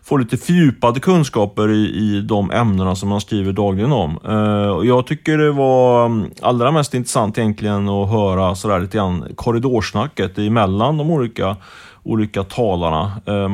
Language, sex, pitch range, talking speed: Swedish, male, 95-115 Hz, 155 wpm